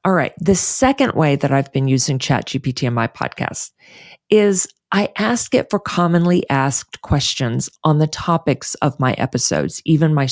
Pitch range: 140-210 Hz